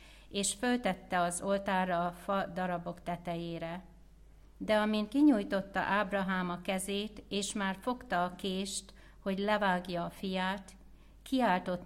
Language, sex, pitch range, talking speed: Hungarian, female, 175-200 Hz, 120 wpm